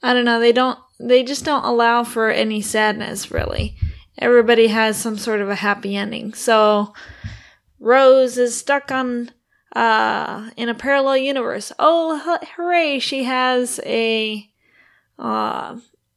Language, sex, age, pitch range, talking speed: English, female, 20-39, 215-260 Hz, 135 wpm